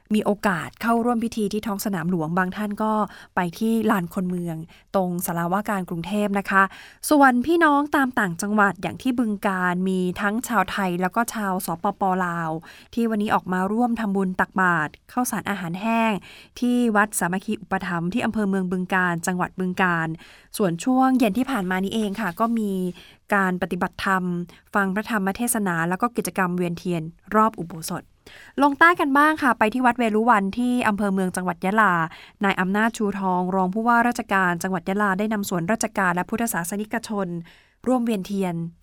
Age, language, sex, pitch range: 20-39, Thai, female, 185-225 Hz